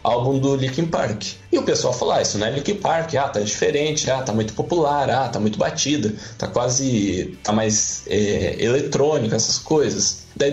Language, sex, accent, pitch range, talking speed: Portuguese, male, Brazilian, 110-165 Hz, 195 wpm